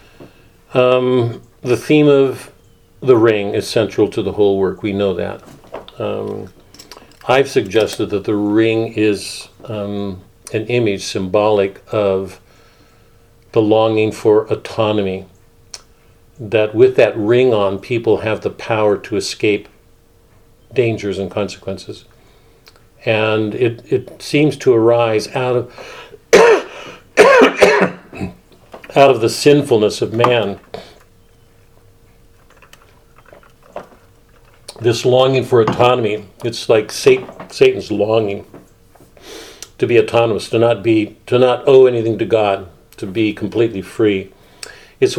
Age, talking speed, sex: 50-69, 110 wpm, male